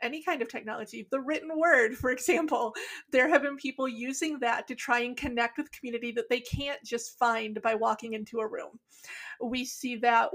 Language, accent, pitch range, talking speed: English, American, 240-290 Hz, 195 wpm